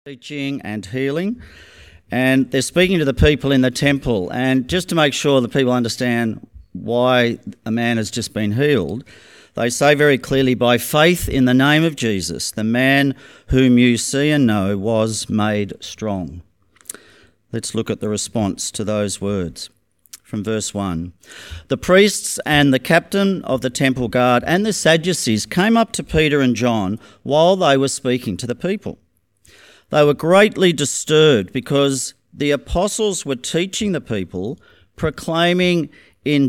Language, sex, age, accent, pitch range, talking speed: English, male, 40-59, Australian, 110-150 Hz, 160 wpm